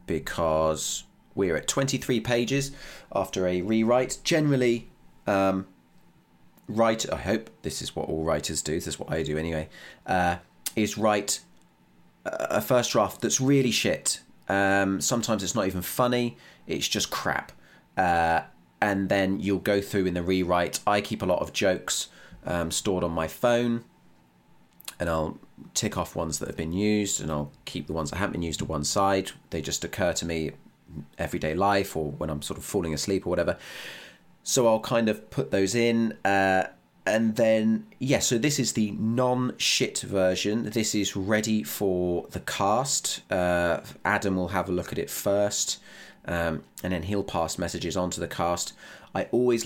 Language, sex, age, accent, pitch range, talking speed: English, male, 30-49, British, 85-110 Hz, 175 wpm